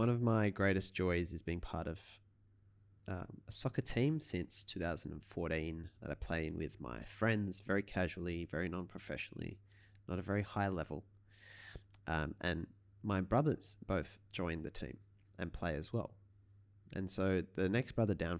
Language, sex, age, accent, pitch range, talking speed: English, male, 20-39, Australian, 90-105 Hz, 160 wpm